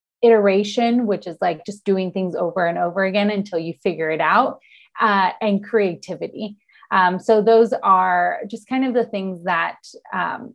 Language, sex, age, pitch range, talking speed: English, female, 30-49, 185-230 Hz, 170 wpm